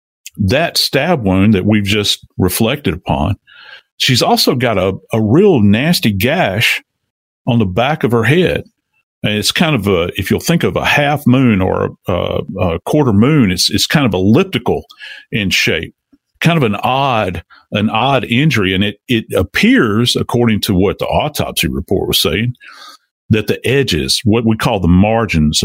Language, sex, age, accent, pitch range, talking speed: English, male, 50-69, American, 100-135 Hz, 170 wpm